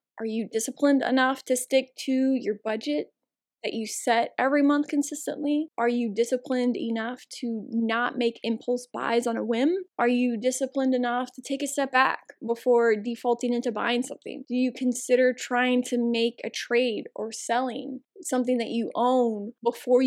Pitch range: 230-265 Hz